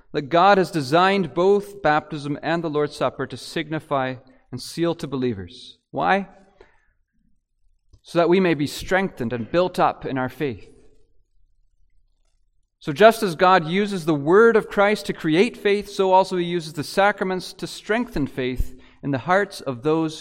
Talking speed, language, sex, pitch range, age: 165 wpm, English, male, 150-195 Hz, 40-59